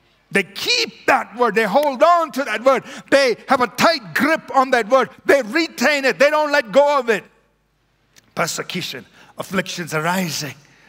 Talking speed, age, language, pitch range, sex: 165 wpm, 50-69, English, 155-255 Hz, male